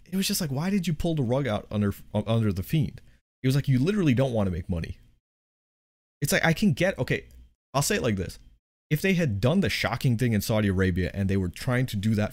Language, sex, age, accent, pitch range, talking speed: English, male, 30-49, American, 90-125 Hz, 260 wpm